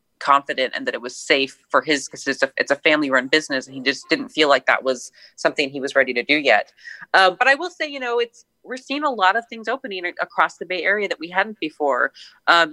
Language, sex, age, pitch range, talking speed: English, female, 30-49, 145-195 Hz, 250 wpm